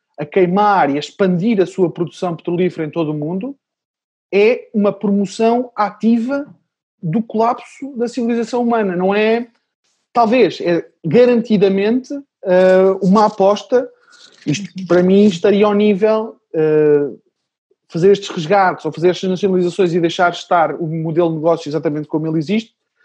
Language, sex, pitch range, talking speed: English, male, 175-215 Hz, 140 wpm